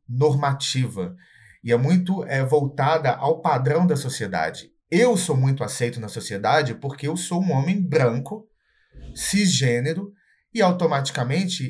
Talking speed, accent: 125 wpm, Brazilian